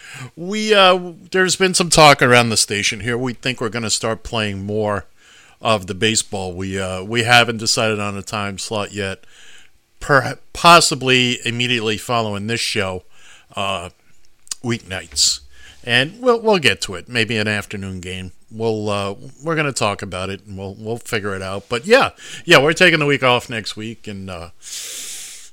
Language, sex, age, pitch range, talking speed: English, male, 50-69, 105-135 Hz, 175 wpm